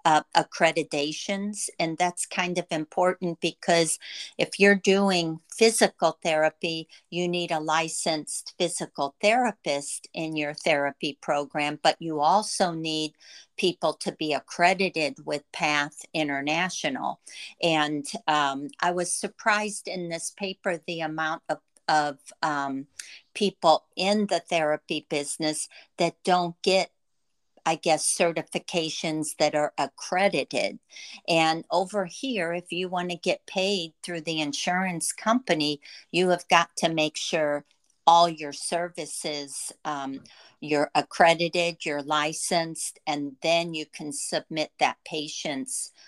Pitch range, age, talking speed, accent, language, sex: 155-180 Hz, 50-69, 125 wpm, American, English, female